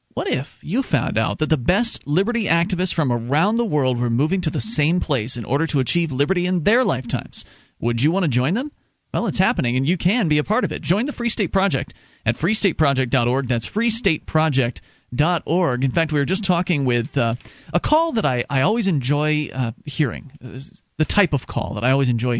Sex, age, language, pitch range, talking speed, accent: male, 40-59, English, 135-185 Hz, 215 wpm, American